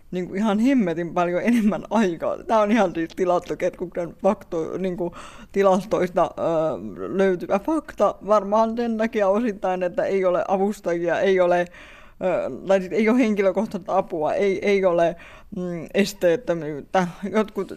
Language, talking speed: Finnish, 120 wpm